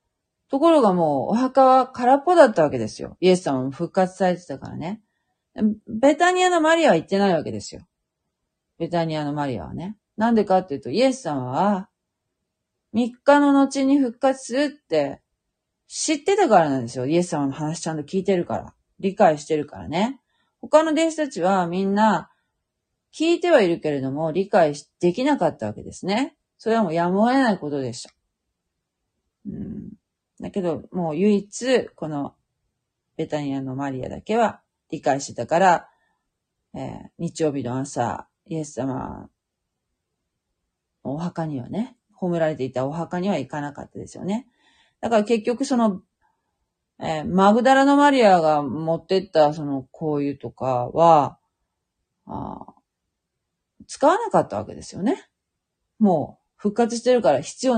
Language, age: Japanese, 40-59